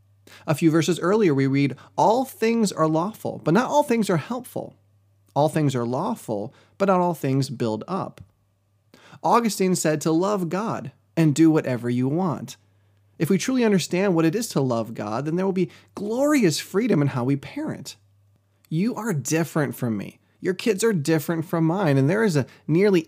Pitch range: 120-175 Hz